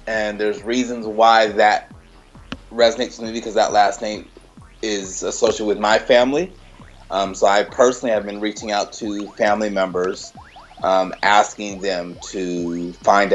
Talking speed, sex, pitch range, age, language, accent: 150 wpm, male, 105-140 Hz, 30-49, English, American